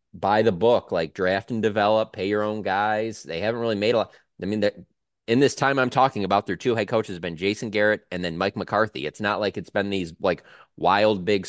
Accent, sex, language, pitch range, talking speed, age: American, male, English, 95-120 Hz, 245 wpm, 20-39